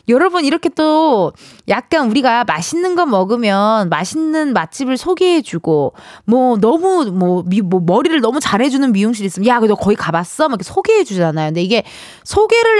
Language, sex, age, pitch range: Korean, female, 20-39, 195-310 Hz